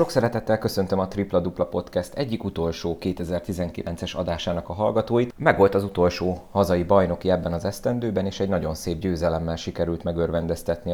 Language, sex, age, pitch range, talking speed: Hungarian, male, 30-49, 85-100 Hz, 160 wpm